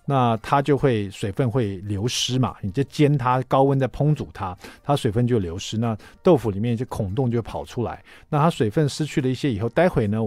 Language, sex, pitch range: Chinese, male, 105-145 Hz